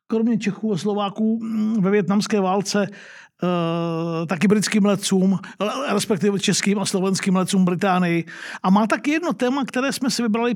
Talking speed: 150 wpm